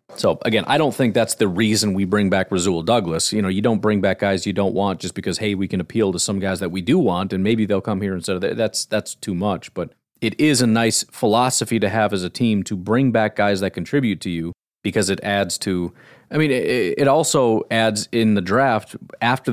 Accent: American